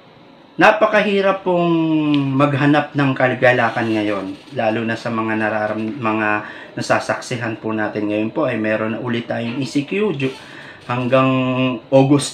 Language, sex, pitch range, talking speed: English, male, 115-150 Hz, 120 wpm